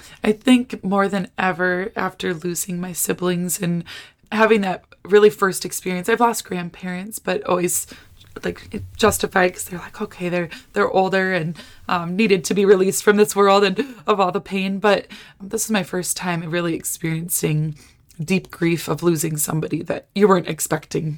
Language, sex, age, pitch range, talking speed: English, female, 20-39, 170-200 Hz, 170 wpm